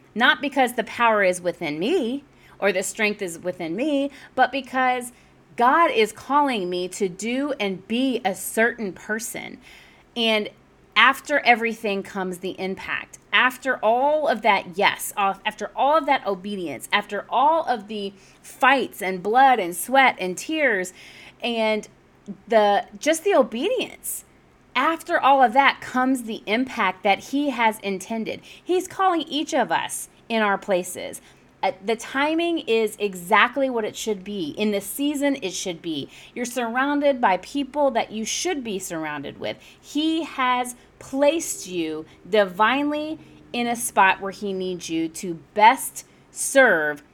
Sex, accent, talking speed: female, American, 150 wpm